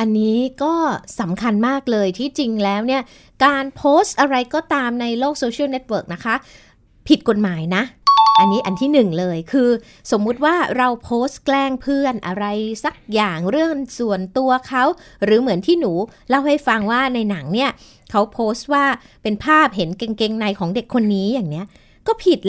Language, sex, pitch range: Thai, female, 220-280 Hz